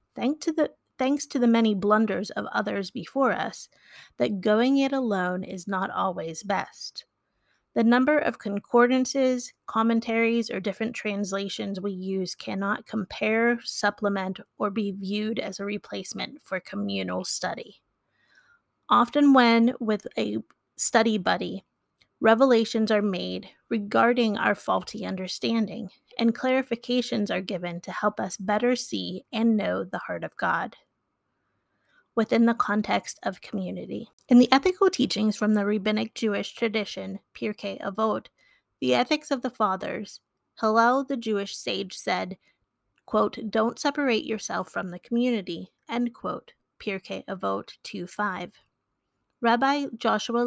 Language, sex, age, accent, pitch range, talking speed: English, female, 30-49, American, 200-245 Hz, 130 wpm